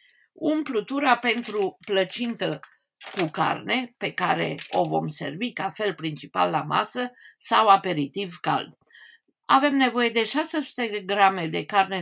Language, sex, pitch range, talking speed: Romanian, female, 185-260 Hz, 125 wpm